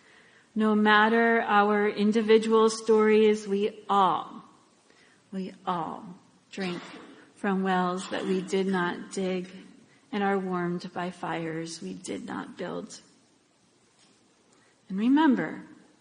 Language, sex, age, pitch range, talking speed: English, female, 40-59, 175-225 Hz, 105 wpm